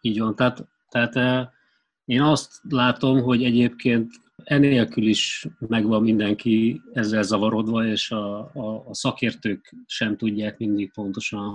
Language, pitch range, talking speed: Hungarian, 105-125 Hz, 120 wpm